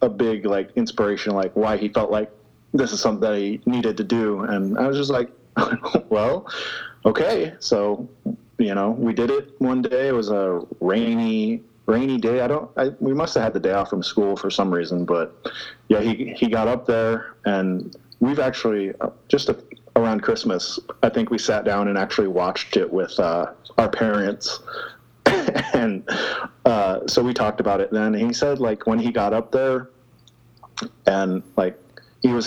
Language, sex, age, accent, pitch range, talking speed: English, male, 30-49, American, 100-125 Hz, 185 wpm